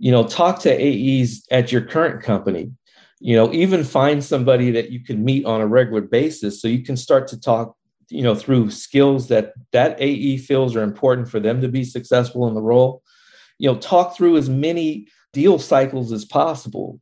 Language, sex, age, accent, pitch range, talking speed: English, male, 50-69, American, 110-135 Hz, 195 wpm